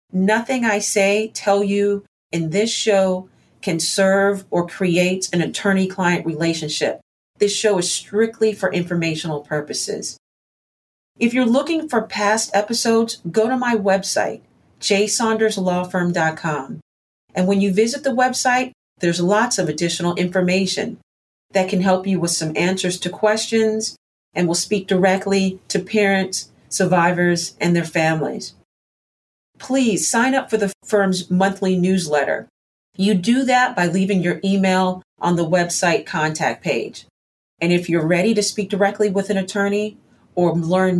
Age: 40-59